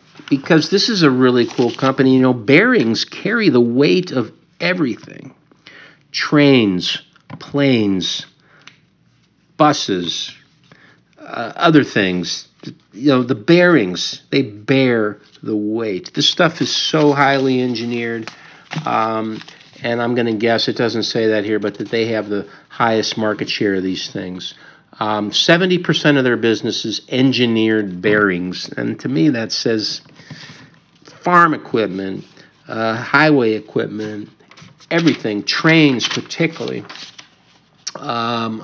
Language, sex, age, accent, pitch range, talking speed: English, male, 50-69, American, 110-150 Hz, 120 wpm